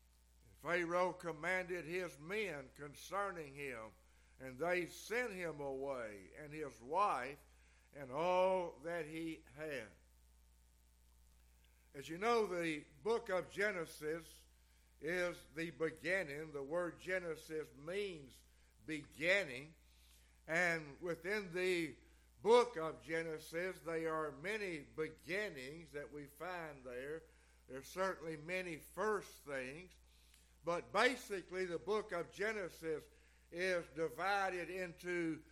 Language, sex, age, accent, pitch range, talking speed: English, male, 60-79, American, 140-180 Hz, 105 wpm